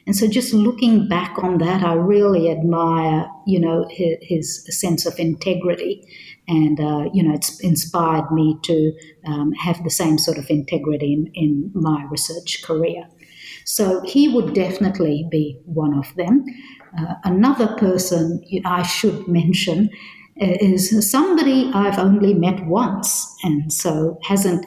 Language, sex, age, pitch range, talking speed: English, female, 50-69, 165-190 Hz, 145 wpm